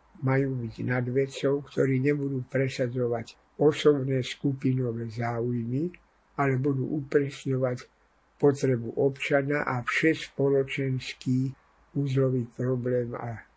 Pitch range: 125-140 Hz